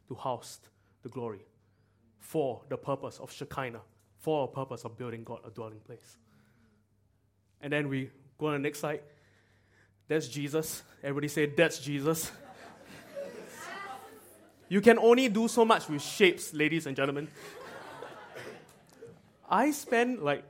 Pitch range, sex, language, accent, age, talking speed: 130-215 Hz, male, English, Malaysian, 20-39, 135 wpm